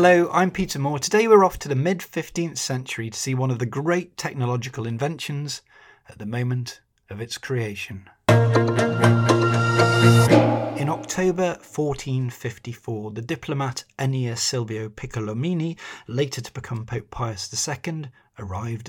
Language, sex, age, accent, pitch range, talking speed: English, male, 30-49, British, 115-145 Hz, 125 wpm